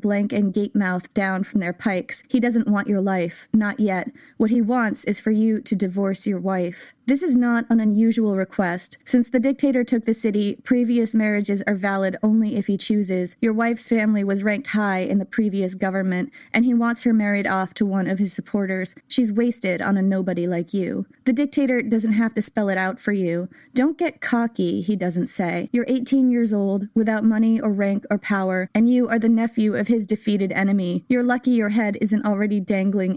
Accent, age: American, 20-39